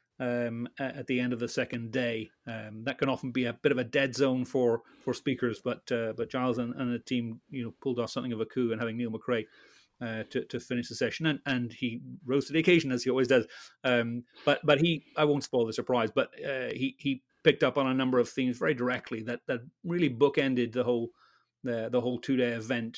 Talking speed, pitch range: 240 wpm, 120-140 Hz